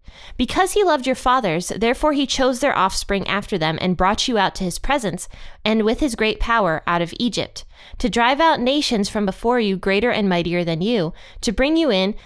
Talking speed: 210 wpm